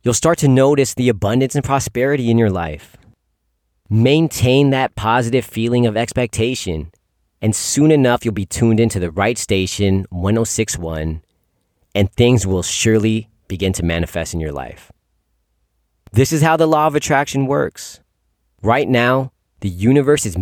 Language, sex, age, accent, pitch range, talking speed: English, male, 30-49, American, 85-120 Hz, 150 wpm